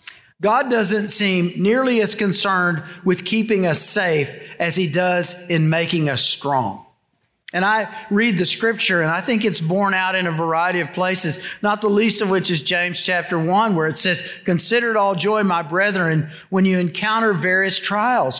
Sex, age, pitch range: male, 50-69, 175-220 Hz